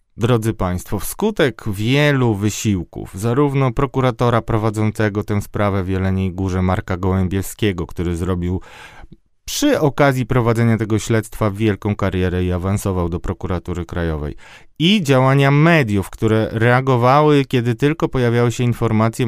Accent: native